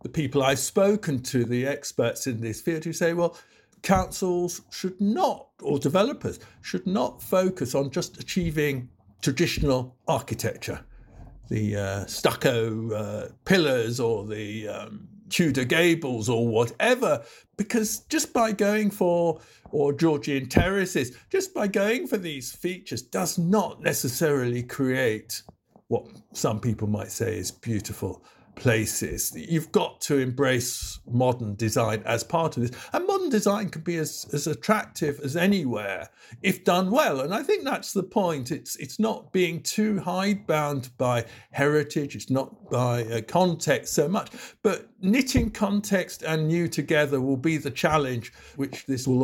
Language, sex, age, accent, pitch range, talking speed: English, male, 50-69, British, 120-180 Hz, 145 wpm